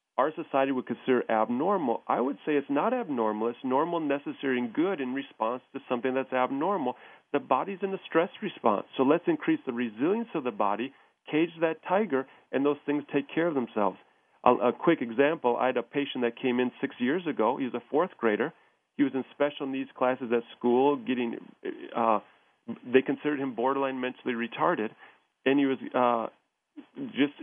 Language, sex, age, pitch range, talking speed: English, male, 40-59, 120-145 Hz, 185 wpm